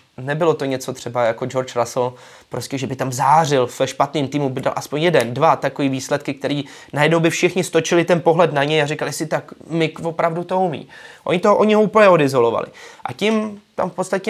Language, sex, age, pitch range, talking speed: Czech, male, 20-39, 135-175 Hz, 205 wpm